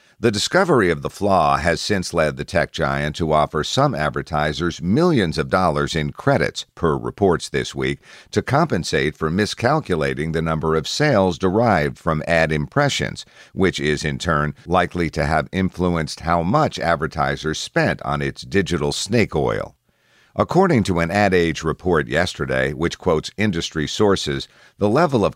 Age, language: 50-69, English